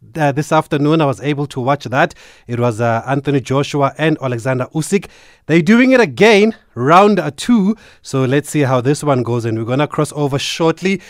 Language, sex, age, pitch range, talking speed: English, male, 30-49, 125-165 Hz, 200 wpm